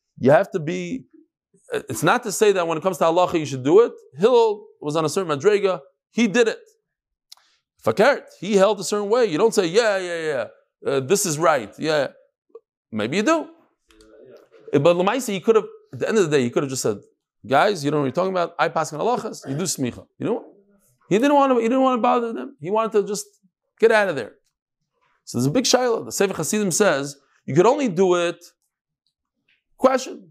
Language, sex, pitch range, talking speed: English, male, 160-255 Hz, 230 wpm